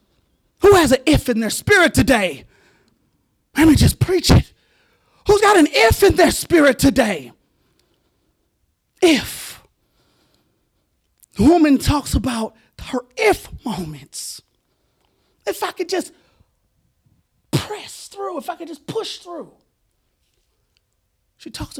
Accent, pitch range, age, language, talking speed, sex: American, 180-290 Hz, 30-49, English, 120 wpm, male